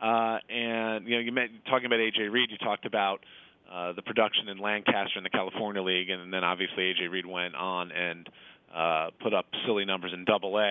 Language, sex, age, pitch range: English, male, 30-49, 95-115 Hz